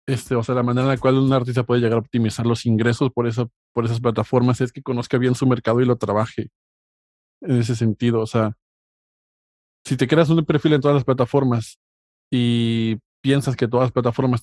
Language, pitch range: Spanish, 115-130 Hz